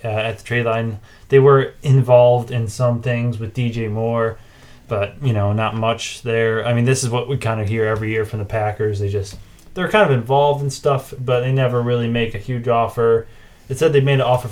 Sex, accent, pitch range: male, American, 110-130 Hz